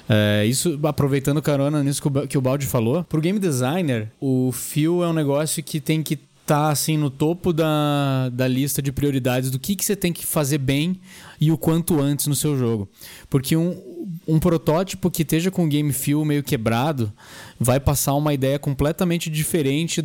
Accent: Brazilian